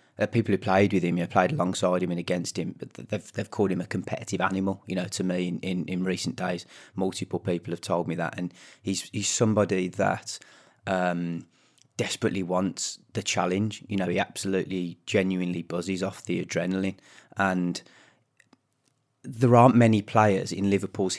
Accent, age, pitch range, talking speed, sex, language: British, 20-39, 90-100 Hz, 180 wpm, male, English